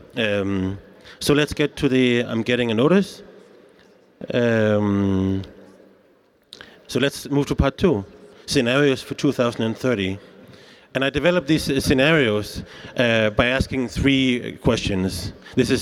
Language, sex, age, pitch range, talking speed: French, male, 30-49, 115-140 Hz, 125 wpm